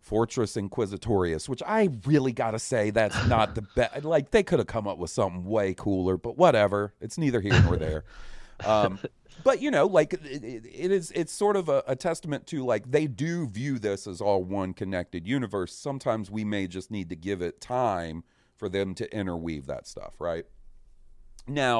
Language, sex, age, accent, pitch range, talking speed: English, male, 40-59, American, 95-140 Hz, 195 wpm